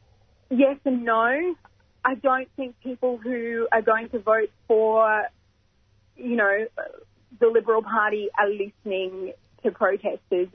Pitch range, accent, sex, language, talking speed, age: 195-230 Hz, Australian, female, English, 125 wpm, 30-49